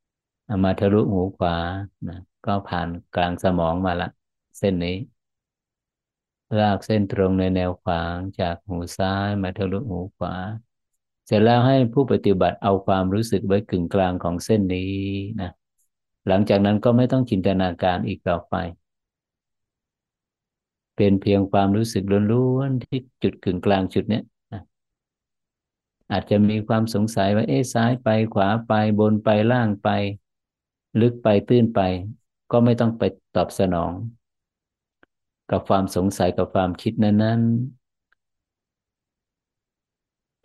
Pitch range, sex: 95-110 Hz, male